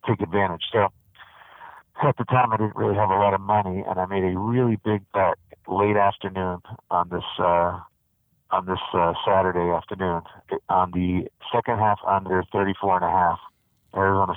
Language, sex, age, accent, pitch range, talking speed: English, male, 50-69, American, 90-110 Hz, 175 wpm